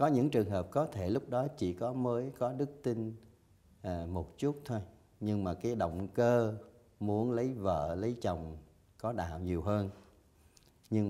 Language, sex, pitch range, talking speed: Vietnamese, male, 85-105 Hz, 175 wpm